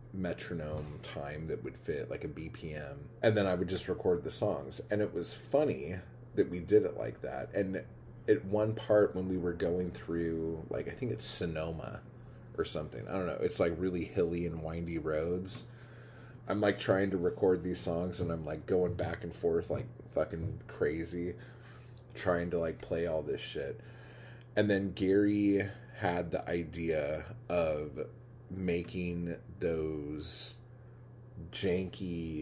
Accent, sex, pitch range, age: American, male, 85-115 Hz, 30-49